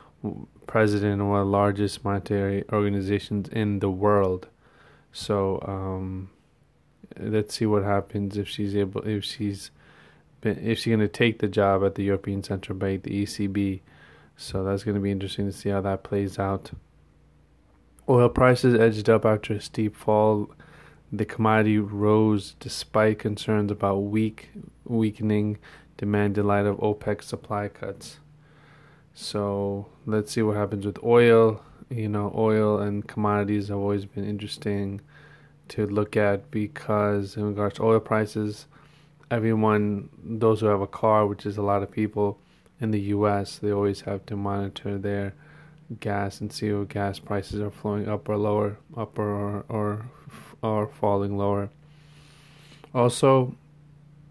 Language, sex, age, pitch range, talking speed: English, male, 20-39, 100-110 Hz, 150 wpm